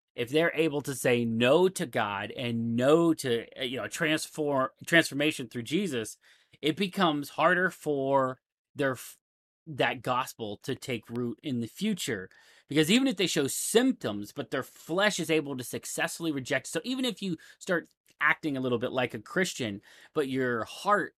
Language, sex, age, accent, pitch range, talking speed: English, male, 30-49, American, 125-170 Hz, 165 wpm